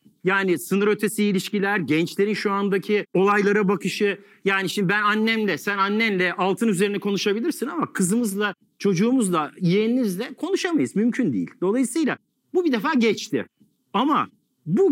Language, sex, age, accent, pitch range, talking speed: English, male, 50-69, Turkish, 185-235 Hz, 130 wpm